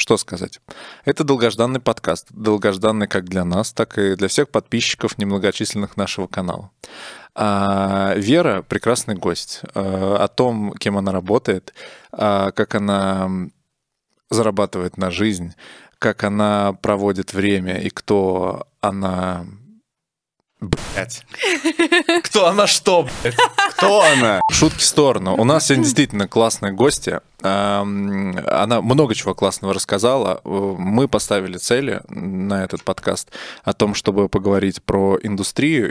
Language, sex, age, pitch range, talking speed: Russian, male, 20-39, 95-110 Hz, 125 wpm